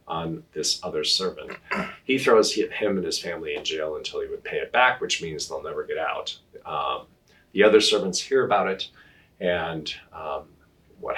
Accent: American